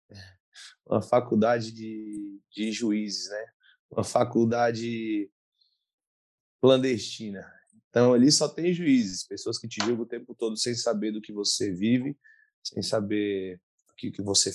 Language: Portuguese